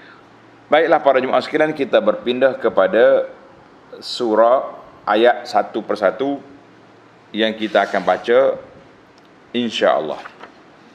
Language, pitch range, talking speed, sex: Malay, 120-150 Hz, 90 wpm, male